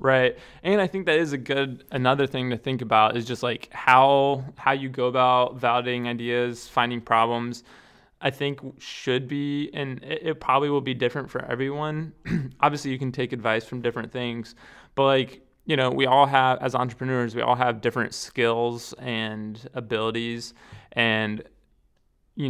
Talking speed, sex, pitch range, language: 170 wpm, male, 115-130 Hz, English